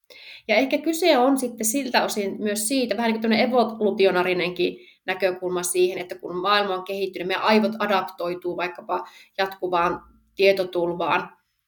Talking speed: 135 wpm